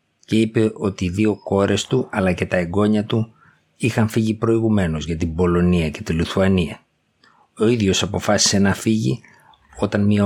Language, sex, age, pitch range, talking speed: Greek, male, 50-69, 95-110 Hz, 165 wpm